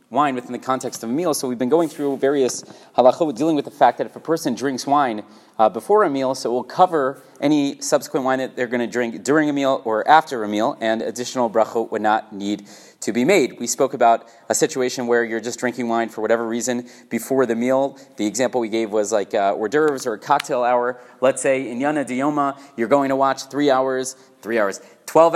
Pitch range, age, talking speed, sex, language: 125-155 Hz, 30-49, 235 wpm, male, English